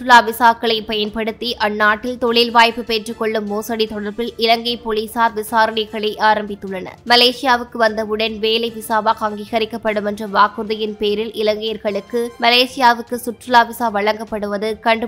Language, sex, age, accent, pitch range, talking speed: English, female, 20-39, Indian, 215-240 Hz, 135 wpm